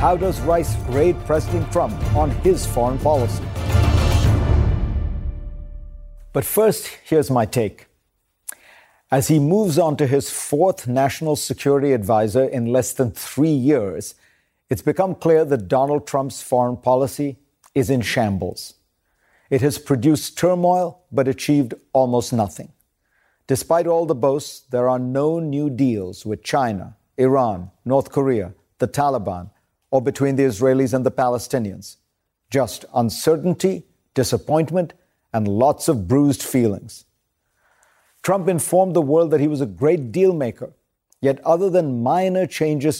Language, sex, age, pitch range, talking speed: English, male, 50-69, 115-150 Hz, 135 wpm